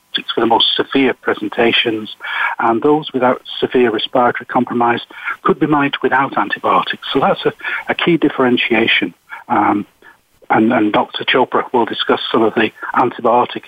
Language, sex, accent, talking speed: English, male, British, 145 wpm